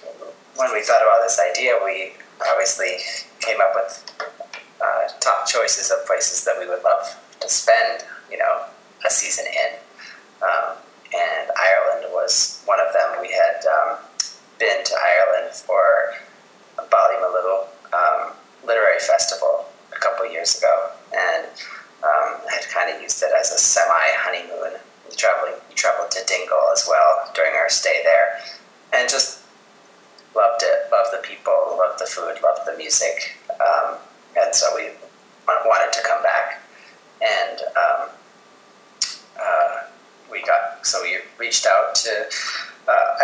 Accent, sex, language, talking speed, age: American, male, English, 145 wpm, 30-49